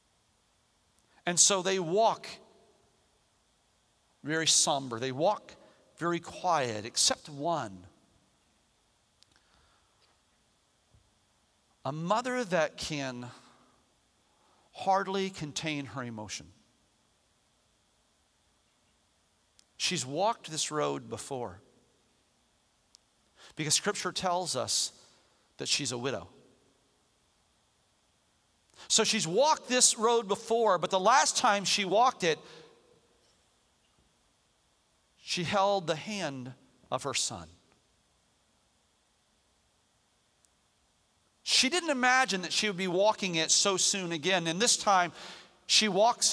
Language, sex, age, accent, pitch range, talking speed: English, male, 40-59, American, 145-205 Hz, 90 wpm